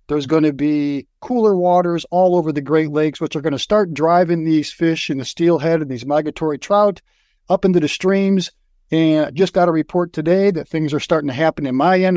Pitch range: 155-185 Hz